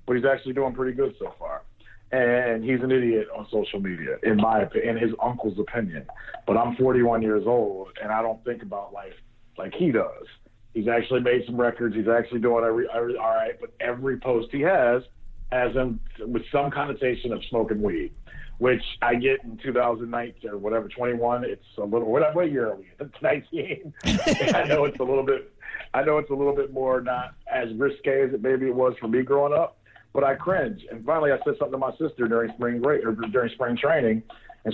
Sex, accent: male, American